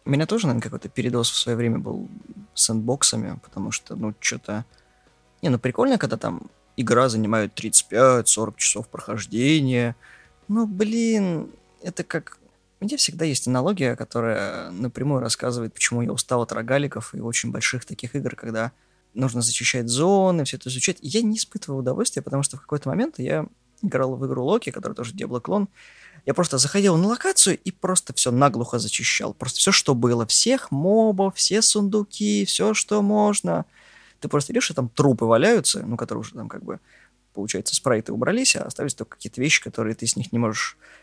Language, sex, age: Russian, male, 20-39